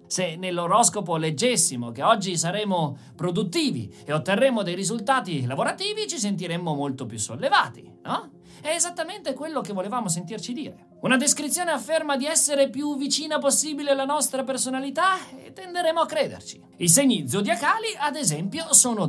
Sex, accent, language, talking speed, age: male, native, Italian, 145 wpm, 40-59